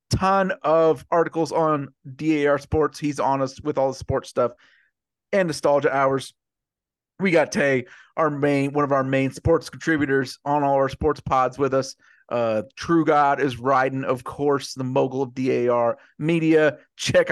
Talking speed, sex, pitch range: 165 wpm, male, 115-150 Hz